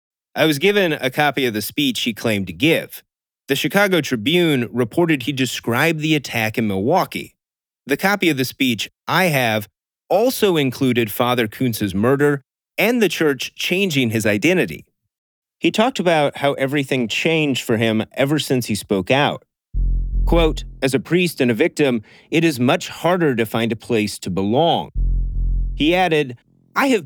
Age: 30-49